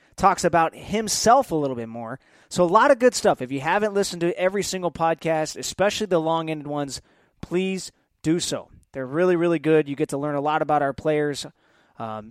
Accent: American